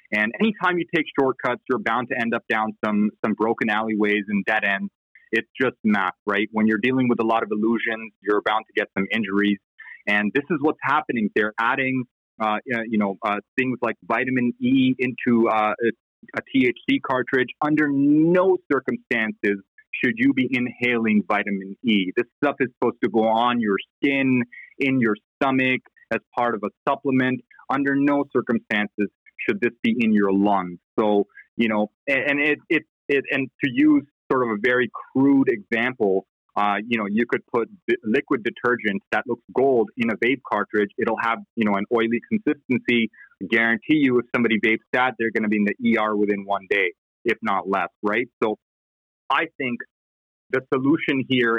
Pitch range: 105-130 Hz